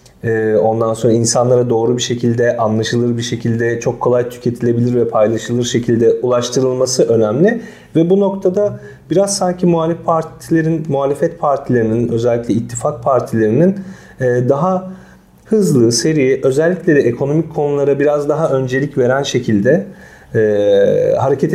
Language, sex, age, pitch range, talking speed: Turkish, male, 40-59, 120-170 Hz, 115 wpm